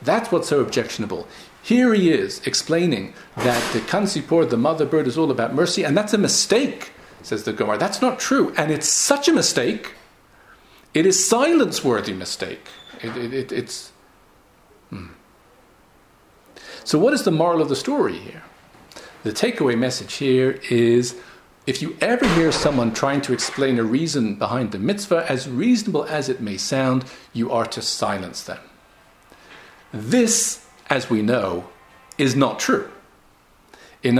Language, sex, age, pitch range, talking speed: English, male, 50-69, 125-185 Hz, 145 wpm